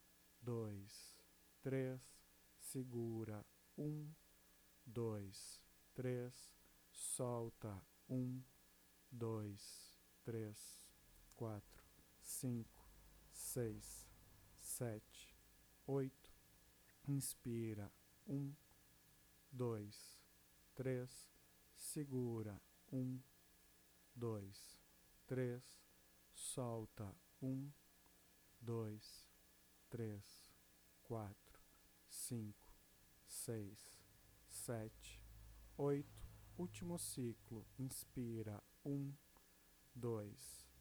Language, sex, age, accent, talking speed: Portuguese, male, 50-69, Brazilian, 55 wpm